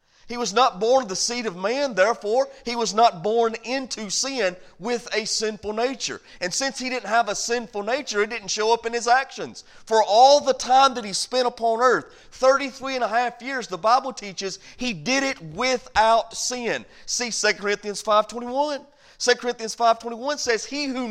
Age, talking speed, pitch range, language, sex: 40-59, 190 wpm, 220-275 Hz, English, male